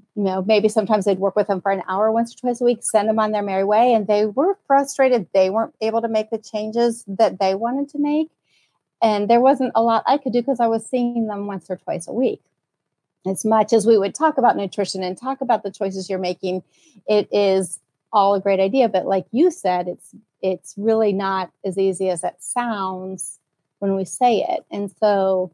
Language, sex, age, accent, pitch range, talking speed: English, female, 40-59, American, 185-220 Hz, 225 wpm